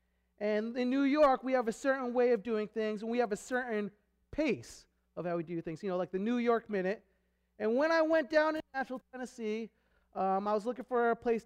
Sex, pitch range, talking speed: male, 180-240 Hz, 235 wpm